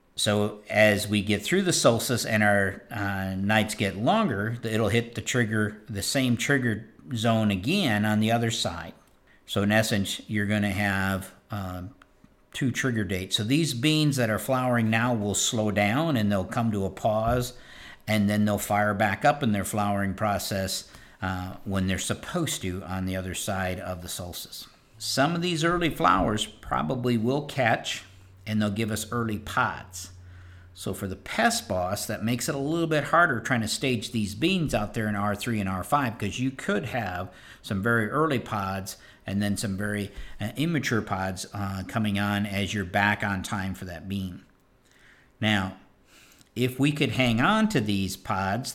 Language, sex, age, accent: English, male, 50-69, American